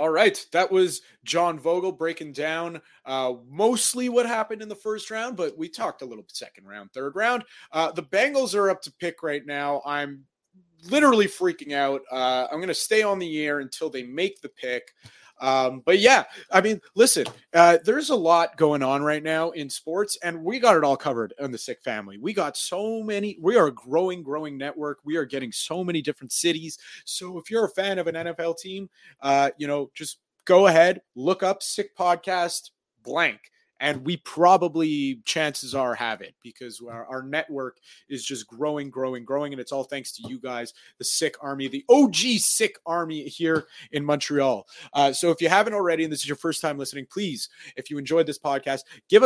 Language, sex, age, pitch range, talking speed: English, male, 30-49, 140-185 Hz, 205 wpm